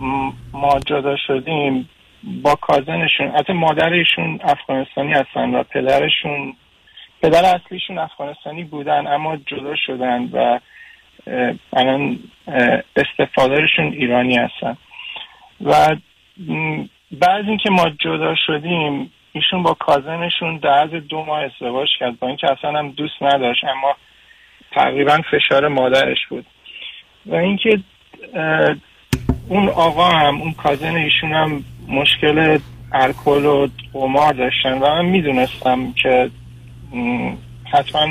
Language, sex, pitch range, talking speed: Persian, male, 125-155 Hz, 105 wpm